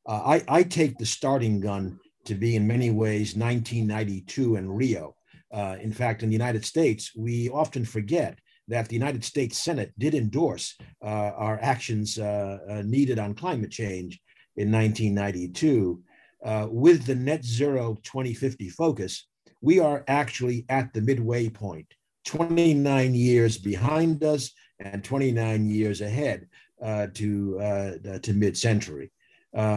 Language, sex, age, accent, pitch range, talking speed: English, male, 50-69, American, 105-130 Hz, 140 wpm